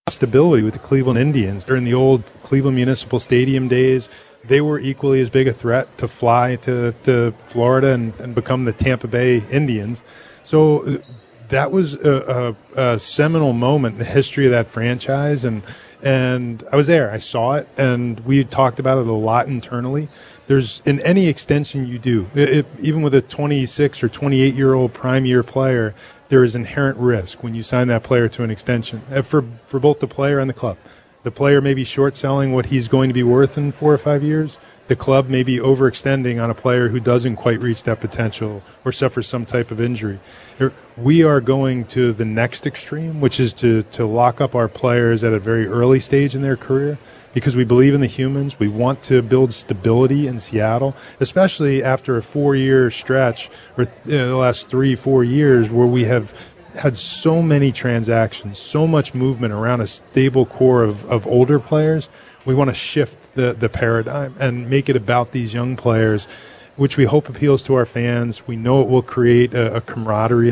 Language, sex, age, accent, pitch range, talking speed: English, male, 30-49, American, 120-135 Hz, 195 wpm